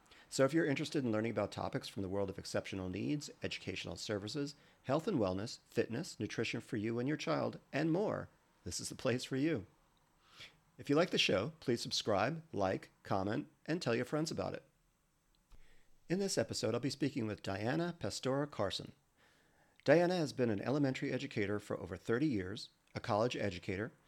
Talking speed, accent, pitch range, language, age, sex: 180 wpm, American, 110-150 Hz, English, 40-59, male